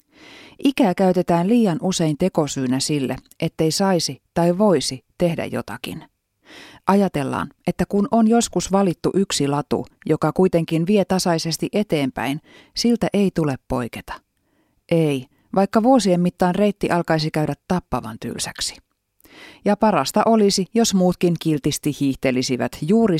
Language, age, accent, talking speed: Finnish, 30-49, native, 120 wpm